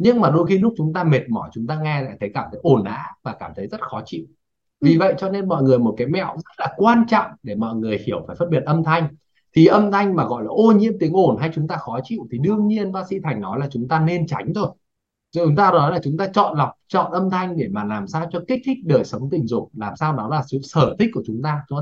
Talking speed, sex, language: 295 wpm, male, Vietnamese